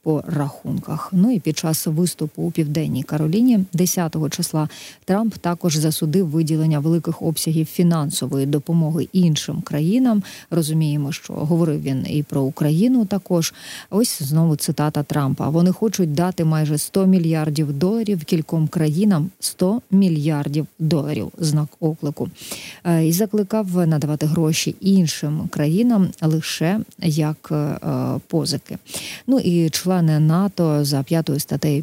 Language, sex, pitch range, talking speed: Ukrainian, female, 150-180 Hz, 125 wpm